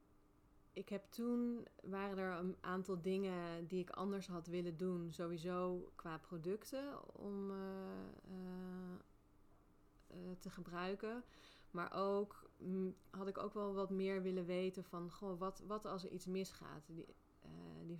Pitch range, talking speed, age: 170-195 Hz, 140 wpm, 20-39